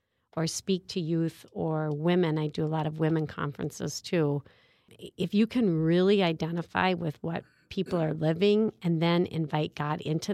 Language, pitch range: English, 155-185 Hz